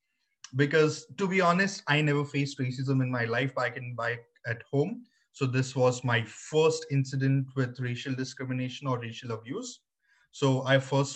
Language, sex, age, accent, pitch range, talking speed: English, male, 20-39, Indian, 130-155 Hz, 165 wpm